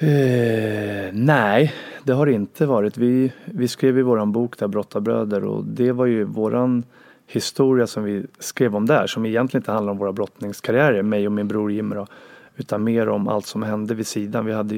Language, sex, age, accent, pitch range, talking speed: Swedish, male, 30-49, native, 100-125 Hz, 200 wpm